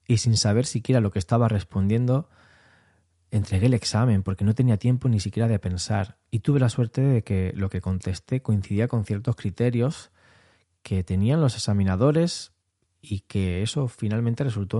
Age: 20-39